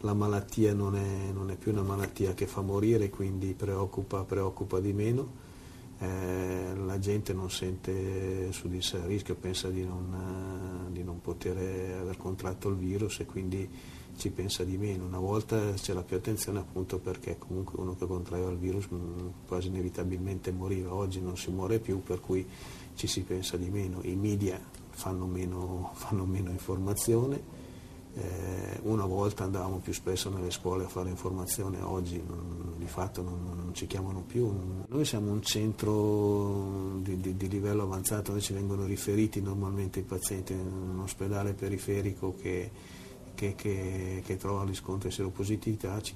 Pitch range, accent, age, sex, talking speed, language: 90-100 Hz, native, 50-69, male, 160 wpm, Italian